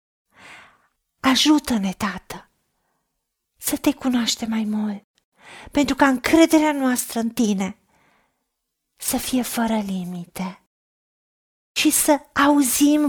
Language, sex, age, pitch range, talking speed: Romanian, female, 40-59, 200-275 Hz, 90 wpm